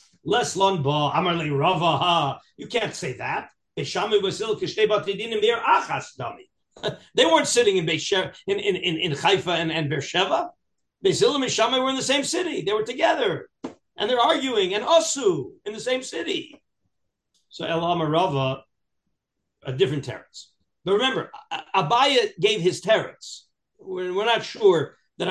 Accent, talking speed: American, 130 wpm